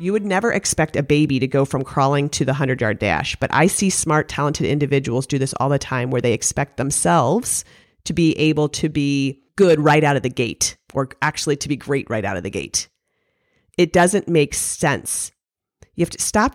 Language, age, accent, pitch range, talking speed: English, 40-59, American, 135-175 Hz, 210 wpm